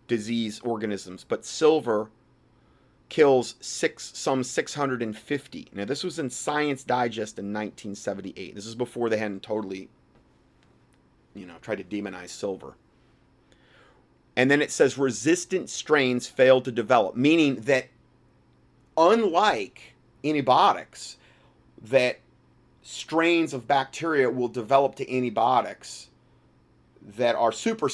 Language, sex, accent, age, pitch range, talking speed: English, male, American, 30-49, 105-145 Hz, 110 wpm